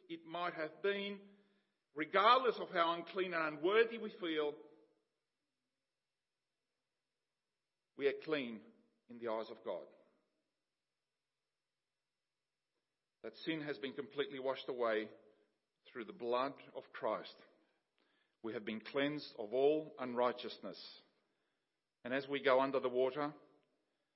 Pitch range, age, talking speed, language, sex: 125-175 Hz, 50-69, 115 wpm, English, male